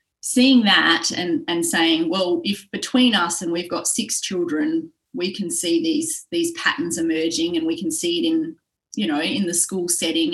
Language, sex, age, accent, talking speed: English, female, 30-49, Australian, 190 wpm